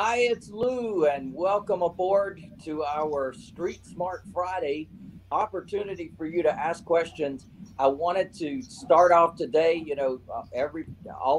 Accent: American